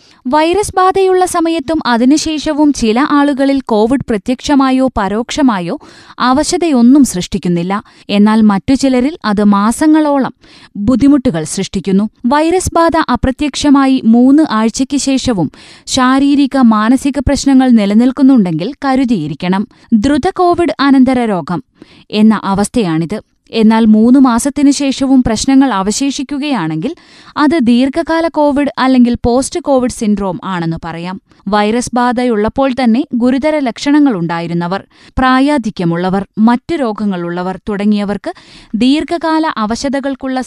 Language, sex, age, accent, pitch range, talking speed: Malayalam, female, 20-39, native, 210-285 Hz, 85 wpm